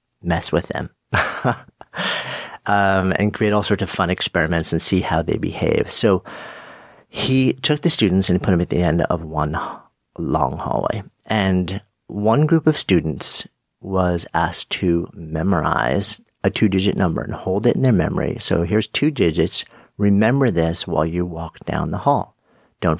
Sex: male